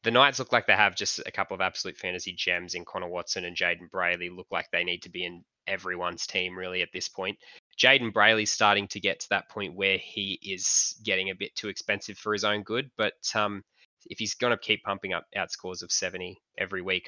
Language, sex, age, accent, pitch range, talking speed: English, male, 20-39, Australian, 95-105 Hz, 230 wpm